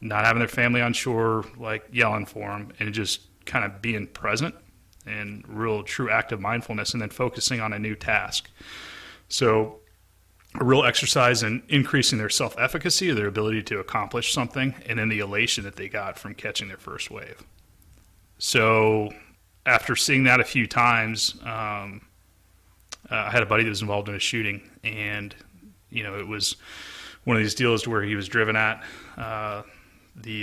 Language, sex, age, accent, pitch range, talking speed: English, male, 30-49, American, 105-120 Hz, 180 wpm